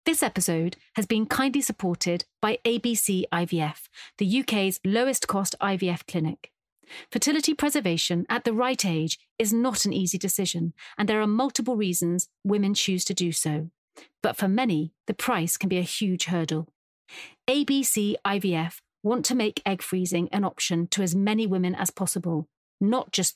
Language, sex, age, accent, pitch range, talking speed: English, female, 40-59, British, 175-230 Hz, 160 wpm